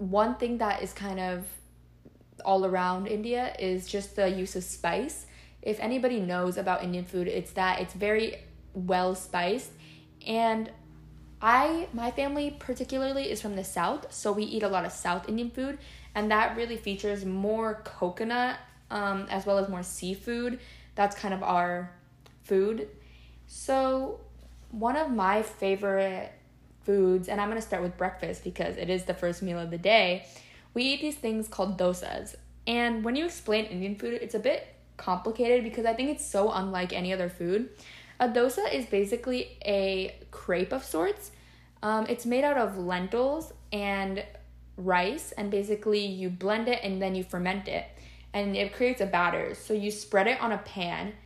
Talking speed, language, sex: 170 wpm, English, female